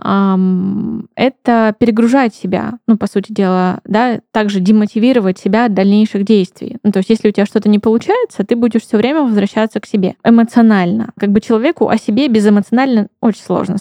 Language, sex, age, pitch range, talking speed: Russian, female, 20-39, 200-235 Hz, 170 wpm